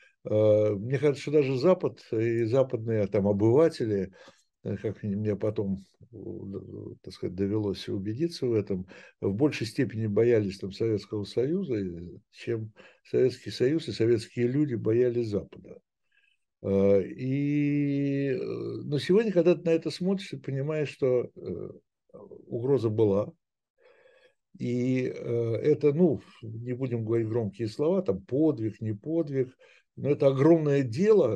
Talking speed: 120 wpm